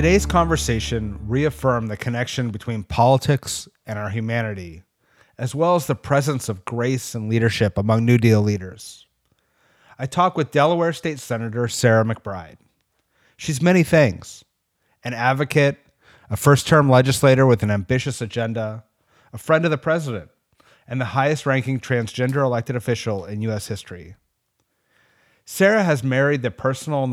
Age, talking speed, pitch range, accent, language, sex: 30-49, 140 wpm, 110-135 Hz, American, English, male